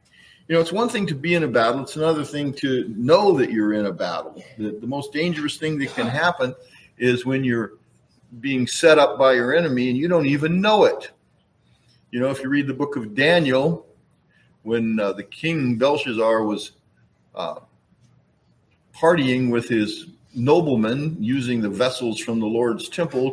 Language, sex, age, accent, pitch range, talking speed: English, male, 50-69, American, 115-145 Hz, 180 wpm